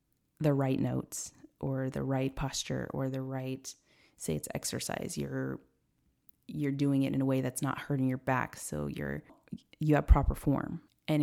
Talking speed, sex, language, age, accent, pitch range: 170 wpm, female, English, 30-49, American, 125-145 Hz